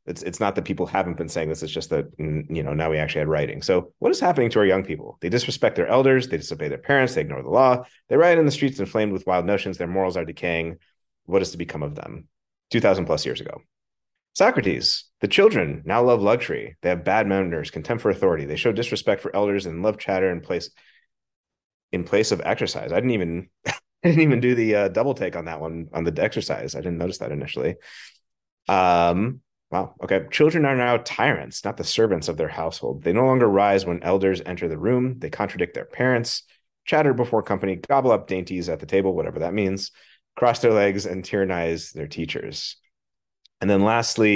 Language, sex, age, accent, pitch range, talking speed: English, male, 30-49, American, 85-110 Hz, 215 wpm